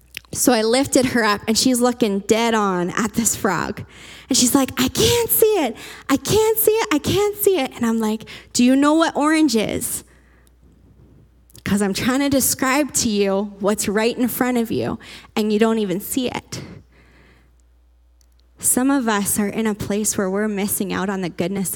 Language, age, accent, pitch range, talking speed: English, 10-29, American, 195-245 Hz, 195 wpm